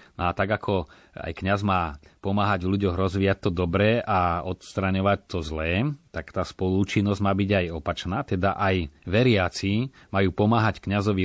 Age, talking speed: 30-49, 150 wpm